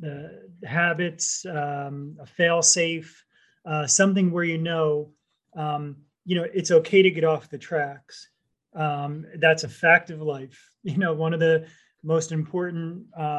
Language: English